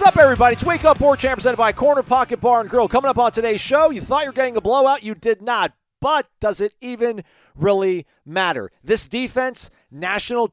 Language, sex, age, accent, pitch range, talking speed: English, male, 40-59, American, 145-190 Hz, 220 wpm